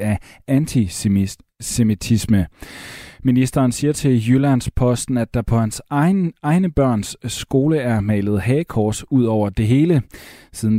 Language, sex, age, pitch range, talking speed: Danish, male, 30-49, 105-130 Hz, 120 wpm